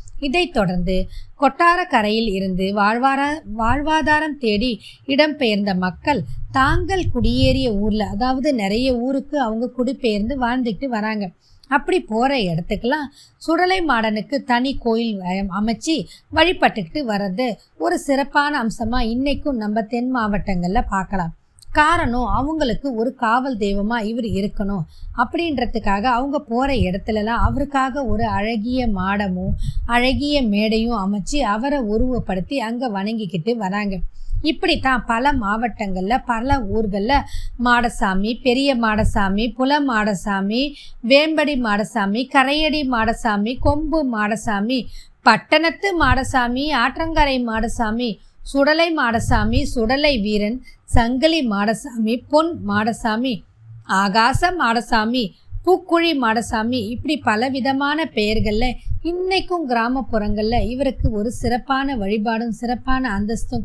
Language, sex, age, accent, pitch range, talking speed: Tamil, female, 20-39, native, 215-275 Hz, 95 wpm